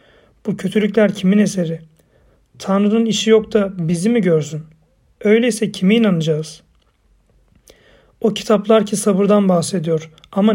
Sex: male